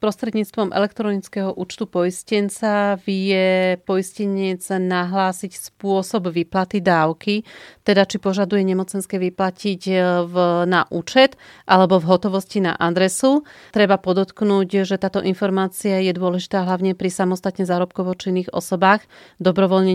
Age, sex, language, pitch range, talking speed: 40-59, female, Slovak, 180-200 Hz, 110 wpm